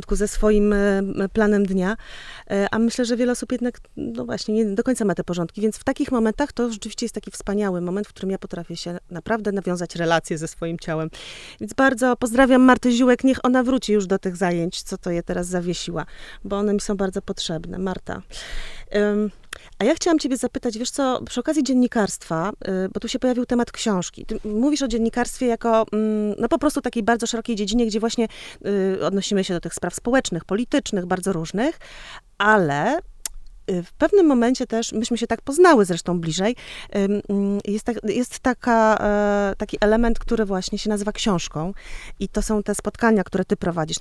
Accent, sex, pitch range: native, female, 180-235 Hz